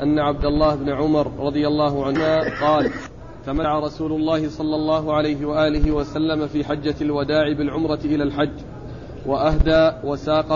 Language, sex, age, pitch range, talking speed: Arabic, male, 40-59, 150-160 Hz, 140 wpm